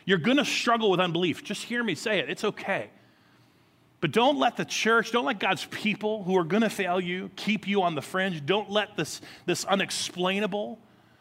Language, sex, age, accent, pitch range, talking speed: English, male, 30-49, American, 150-205 Hz, 205 wpm